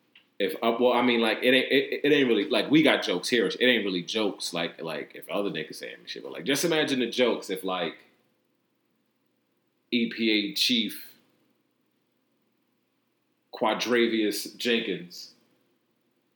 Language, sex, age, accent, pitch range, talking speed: English, male, 30-49, American, 95-120 Hz, 150 wpm